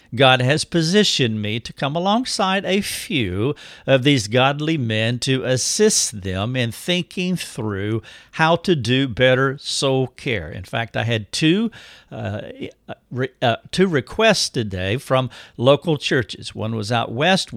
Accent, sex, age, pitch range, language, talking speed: American, male, 50-69, 115-155 Hz, English, 145 wpm